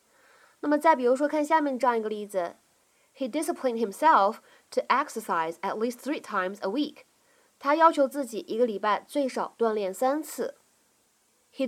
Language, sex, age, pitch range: Chinese, female, 20-39, 215-290 Hz